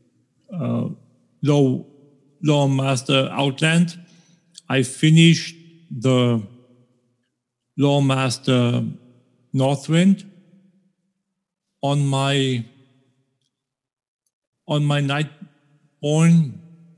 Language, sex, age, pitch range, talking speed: English, male, 50-69, 130-150 Hz, 55 wpm